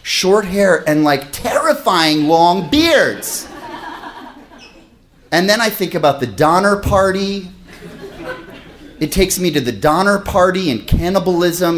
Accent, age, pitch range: American, 30-49, 150-230 Hz